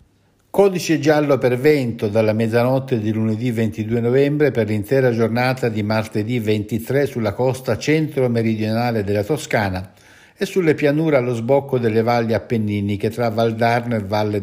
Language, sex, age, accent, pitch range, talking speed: Italian, male, 60-79, native, 100-130 Hz, 140 wpm